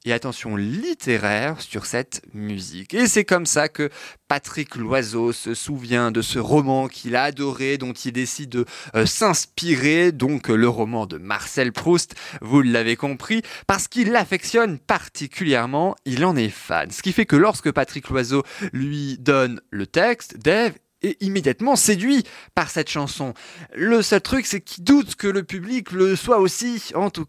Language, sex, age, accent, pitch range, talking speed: French, male, 20-39, French, 120-180 Hz, 165 wpm